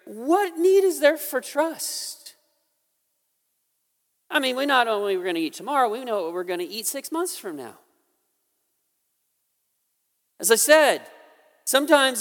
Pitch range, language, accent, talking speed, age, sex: 195-295 Hz, English, American, 155 wpm, 40-59, male